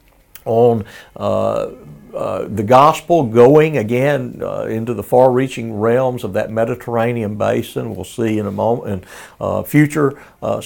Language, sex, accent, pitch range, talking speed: English, male, American, 100-140 Hz, 140 wpm